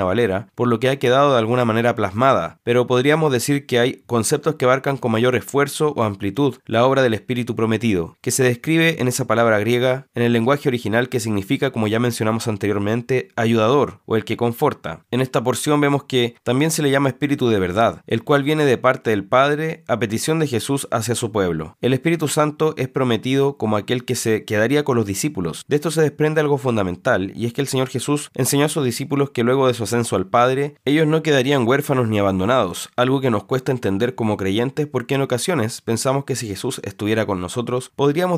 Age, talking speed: 20-39, 215 wpm